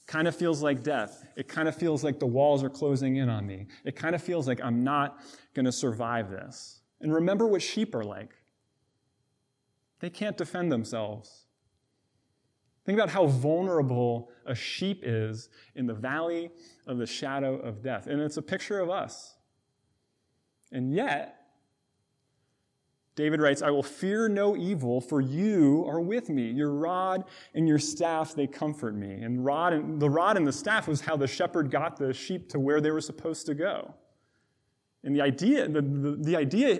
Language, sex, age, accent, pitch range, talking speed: English, male, 20-39, American, 130-160 Hz, 175 wpm